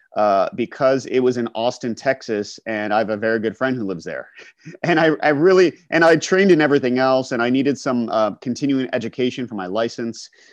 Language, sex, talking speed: English, male, 210 wpm